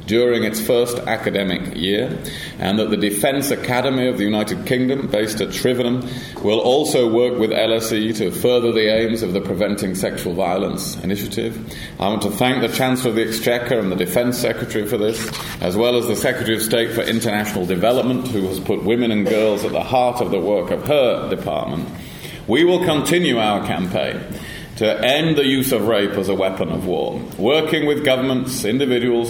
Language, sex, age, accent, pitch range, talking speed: English, male, 30-49, British, 105-125 Hz, 190 wpm